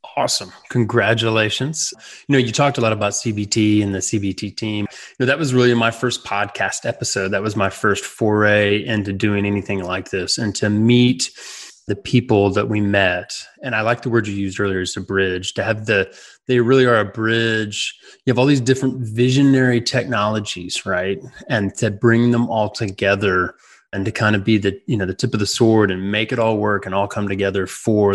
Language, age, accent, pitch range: English, 20-39, American, 100-125 Hz